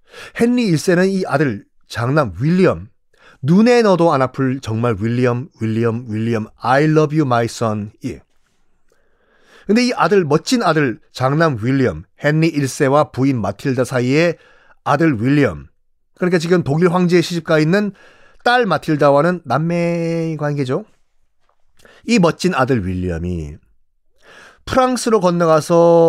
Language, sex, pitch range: Korean, male, 130-195 Hz